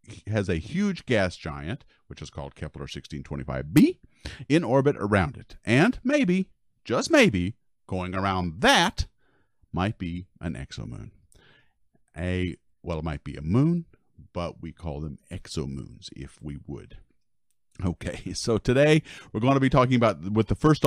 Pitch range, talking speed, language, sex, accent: 90-130 Hz, 145 wpm, English, male, American